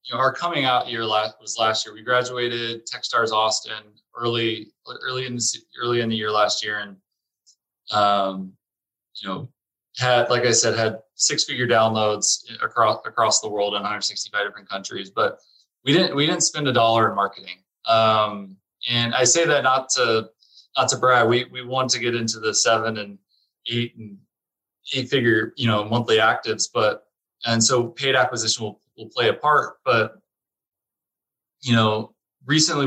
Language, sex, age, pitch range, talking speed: English, male, 20-39, 105-125 Hz, 170 wpm